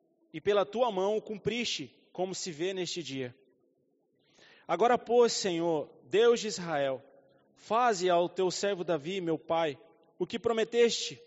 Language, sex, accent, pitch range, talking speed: Portuguese, male, Brazilian, 170-225 Hz, 145 wpm